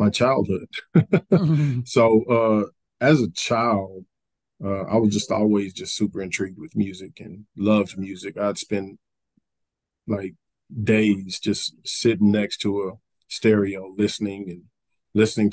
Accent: American